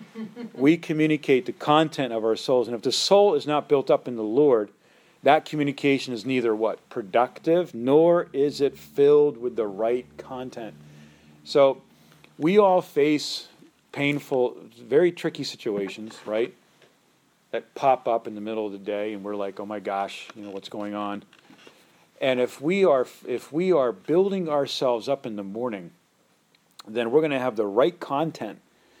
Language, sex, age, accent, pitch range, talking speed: English, male, 40-59, American, 115-150 Hz, 170 wpm